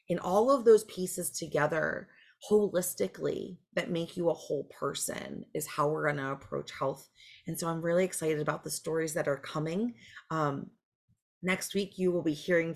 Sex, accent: female, American